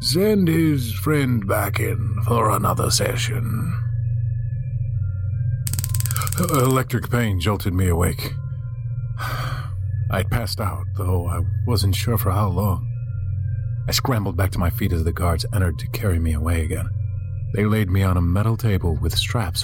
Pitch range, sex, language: 95-115 Hz, male, English